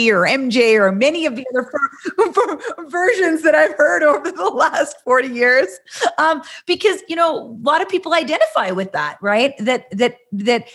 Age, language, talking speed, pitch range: 30-49, English, 175 wpm, 180-250 Hz